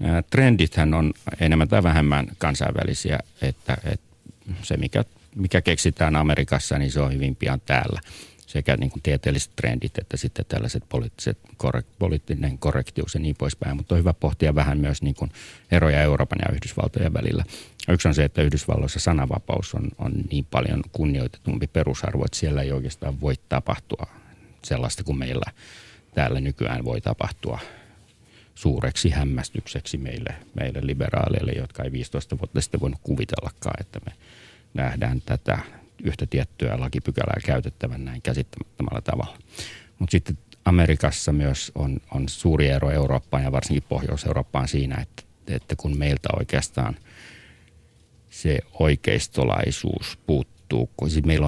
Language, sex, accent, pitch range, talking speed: Finnish, male, native, 70-90 Hz, 130 wpm